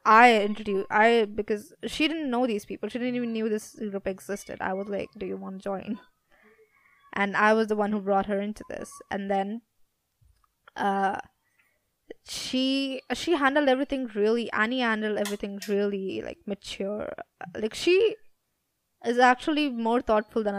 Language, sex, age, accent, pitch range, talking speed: English, female, 20-39, Indian, 205-250 Hz, 160 wpm